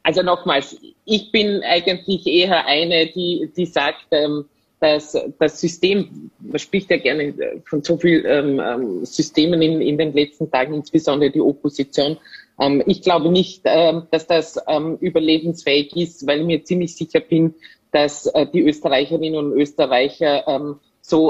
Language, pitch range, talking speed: German, 150-185 Hz, 130 wpm